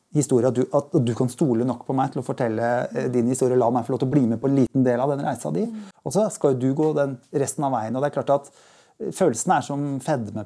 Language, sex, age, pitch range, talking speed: English, male, 30-49, 135-170 Hz, 285 wpm